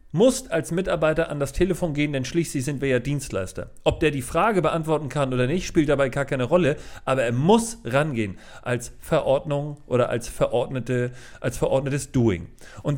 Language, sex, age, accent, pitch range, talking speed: German, male, 40-59, German, 125-170 Hz, 175 wpm